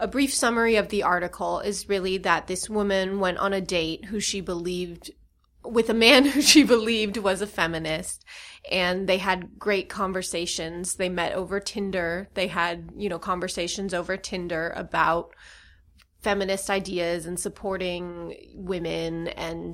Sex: female